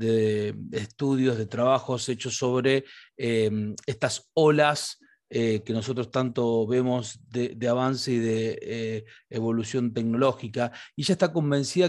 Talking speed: 130 wpm